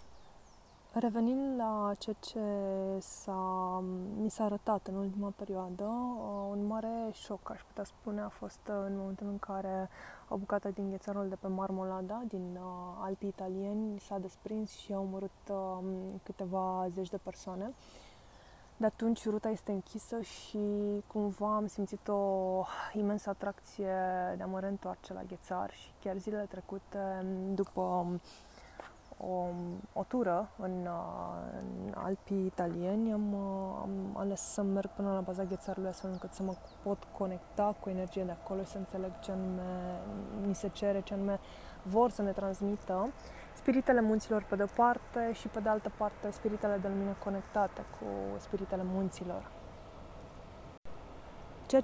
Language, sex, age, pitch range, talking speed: Romanian, female, 20-39, 190-210 Hz, 140 wpm